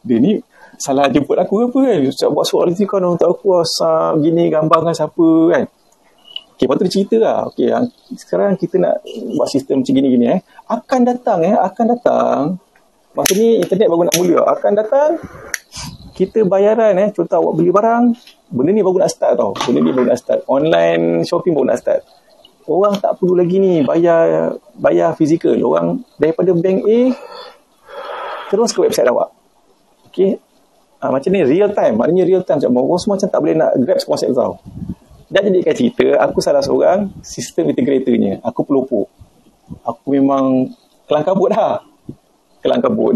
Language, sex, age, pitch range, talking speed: Malay, male, 30-49, 135-215 Hz, 170 wpm